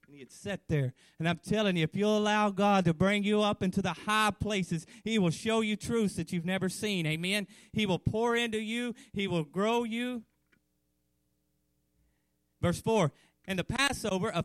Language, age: English, 30-49